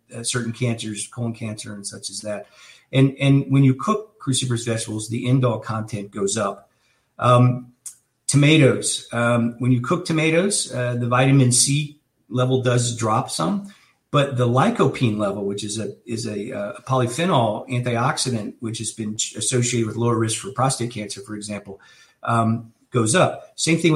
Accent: American